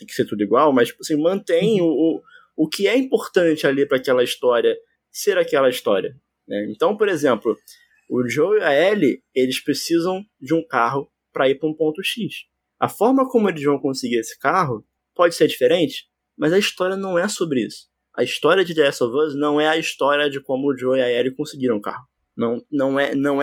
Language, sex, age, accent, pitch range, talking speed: Portuguese, male, 20-39, Brazilian, 130-205 Hz, 215 wpm